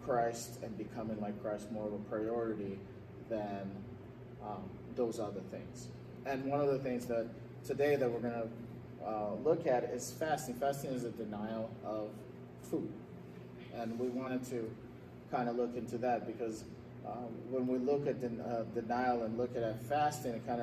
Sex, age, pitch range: male, 30-49, 105-120 Hz